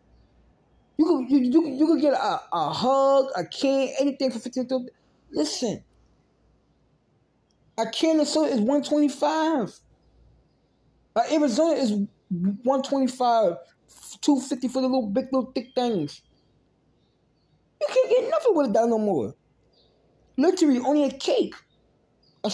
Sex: male